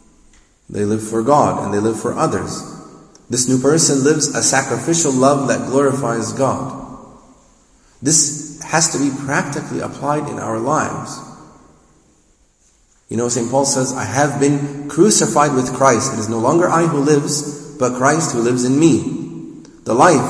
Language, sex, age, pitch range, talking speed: English, male, 30-49, 120-150 Hz, 160 wpm